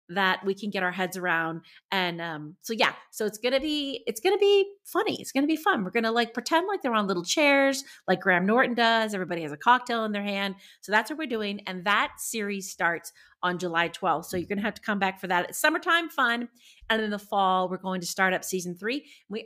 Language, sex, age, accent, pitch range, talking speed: English, female, 30-49, American, 185-250 Hz, 260 wpm